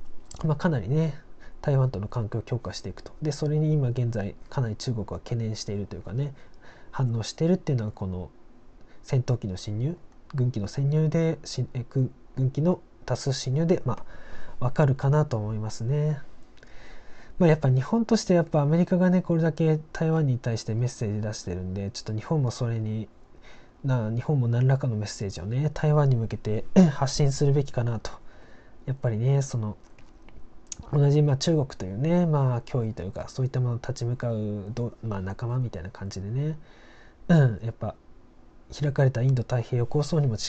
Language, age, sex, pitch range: Japanese, 20-39, male, 110-145 Hz